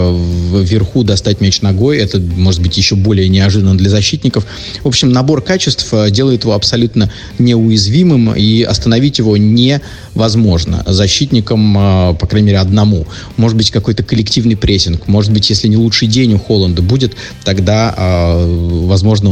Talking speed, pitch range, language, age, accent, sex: 140 wpm, 95-115 Hz, Russian, 30-49, native, male